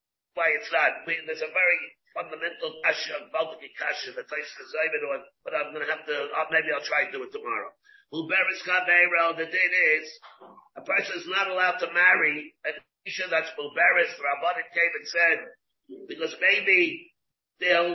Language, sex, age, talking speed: English, male, 50-69, 150 wpm